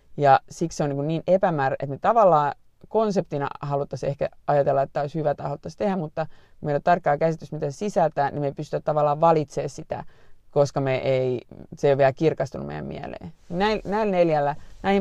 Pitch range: 140-165 Hz